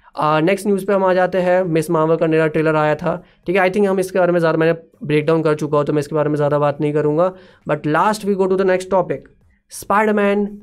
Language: Hindi